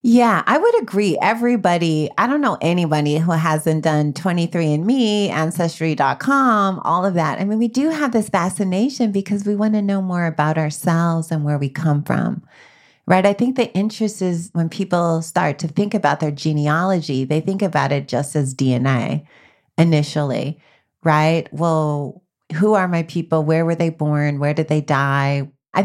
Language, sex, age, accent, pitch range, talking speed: English, female, 30-49, American, 150-190 Hz, 170 wpm